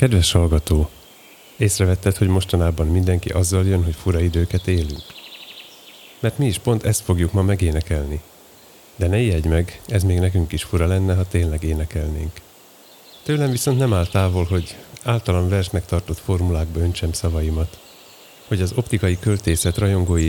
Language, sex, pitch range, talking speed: Hungarian, male, 85-100 Hz, 150 wpm